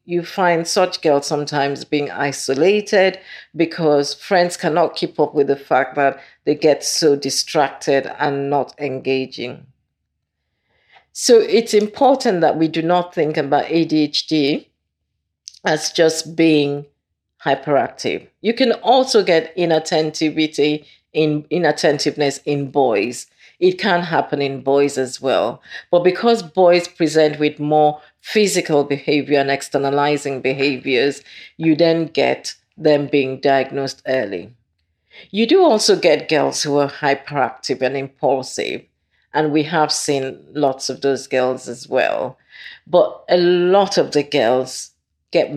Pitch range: 140-170 Hz